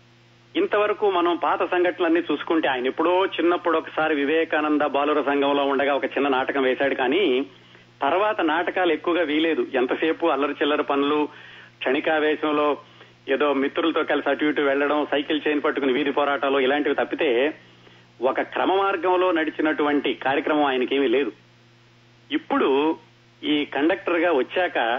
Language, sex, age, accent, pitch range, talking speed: Telugu, male, 30-49, native, 130-160 Hz, 125 wpm